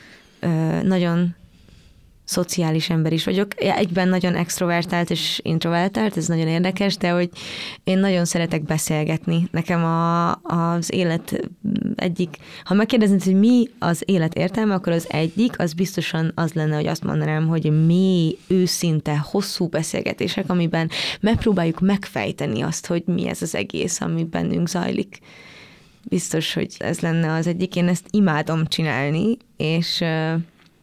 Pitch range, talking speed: 165-190 Hz, 135 wpm